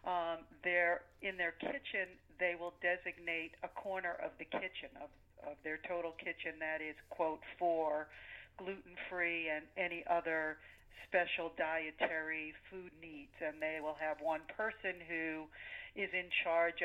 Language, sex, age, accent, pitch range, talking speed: English, female, 50-69, American, 160-190 Hz, 140 wpm